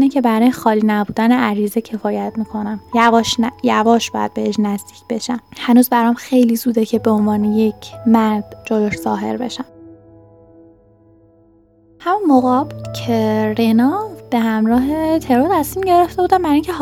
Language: Persian